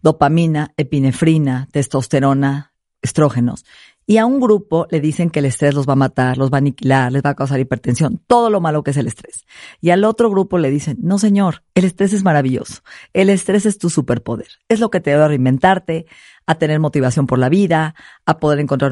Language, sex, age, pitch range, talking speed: Spanish, female, 40-59, 140-180 Hz, 210 wpm